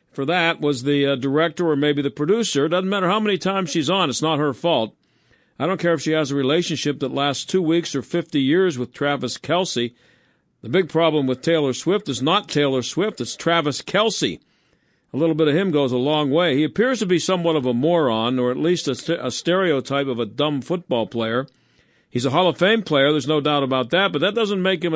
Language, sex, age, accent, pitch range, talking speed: English, male, 50-69, American, 140-175 Hz, 230 wpm